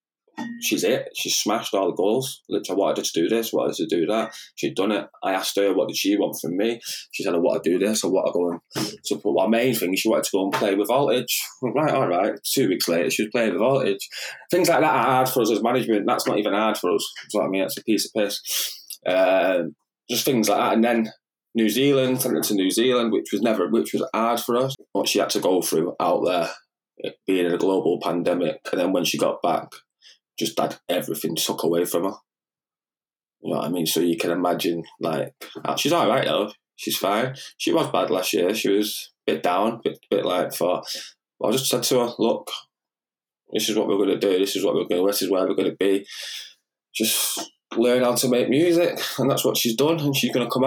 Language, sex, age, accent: English, male, 20-39, British